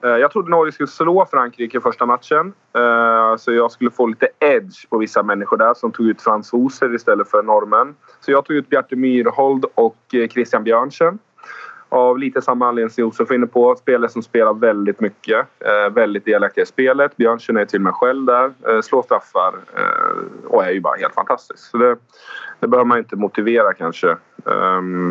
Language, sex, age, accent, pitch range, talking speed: English, male, 20-39, Swedish, 110-130 Hz, 175 wpm